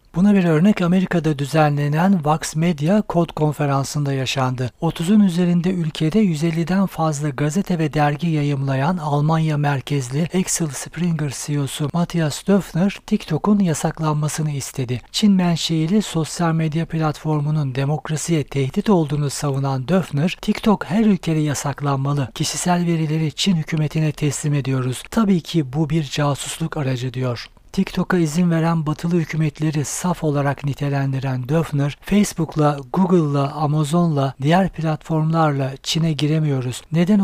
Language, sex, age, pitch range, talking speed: Turkish, male, 60-79, 145-175 Hz, 120 wpm